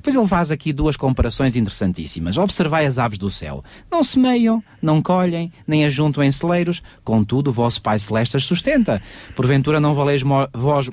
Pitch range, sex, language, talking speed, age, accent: 115-160 Hz, male, Portuguese, 175 wpm, 40-59, Portuguese